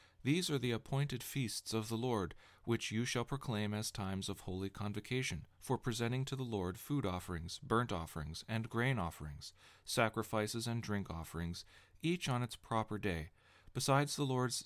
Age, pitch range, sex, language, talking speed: 40-59, 100-125 Hz, male, English, 170 wpm